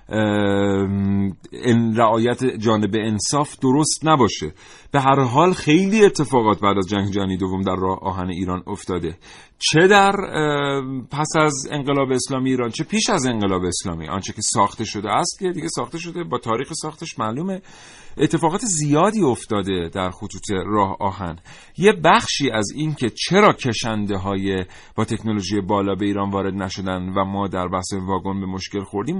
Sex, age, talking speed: male, 40-59, 155 wpm